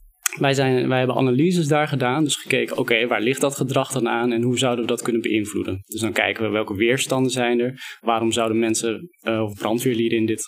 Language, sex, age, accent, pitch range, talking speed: Dutch, male, 20-39, Dutch, 115-135 Hz, 210 wpm